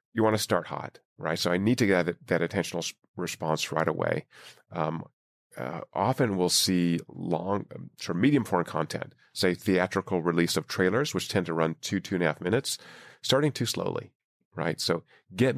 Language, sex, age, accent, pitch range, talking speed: English, male, 40-59, American, 90-110 Hz, 175 wpm